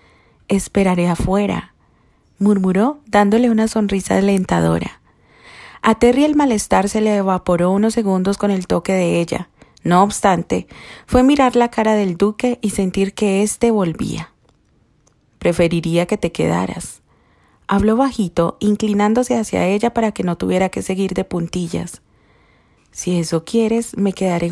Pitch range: 175-215 Hz